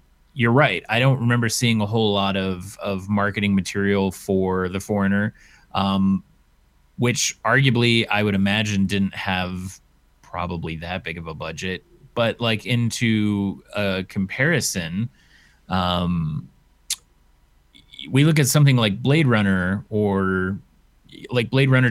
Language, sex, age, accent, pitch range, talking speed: English, male, 30-49, American, 95-110 Hz, 130 wpm